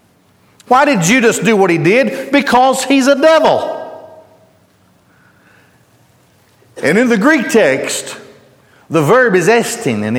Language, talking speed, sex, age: English, 125 wpm, male, 50-69